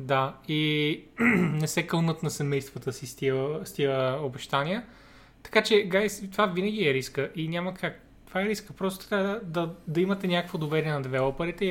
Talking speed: 190 wpm